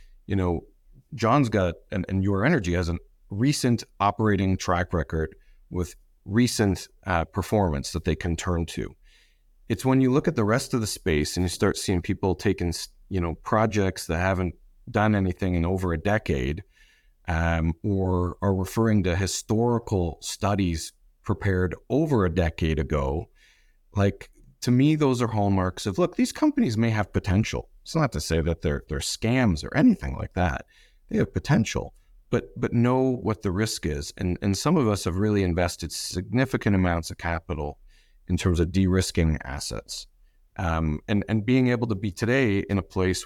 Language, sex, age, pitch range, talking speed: English, male, 40-59, 85-110 Hz, 175 wpm